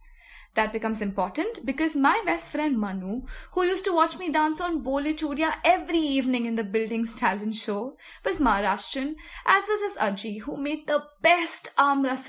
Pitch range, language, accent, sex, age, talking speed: 200-285 Hz, English, Indian, female, 20-39, 165 wpm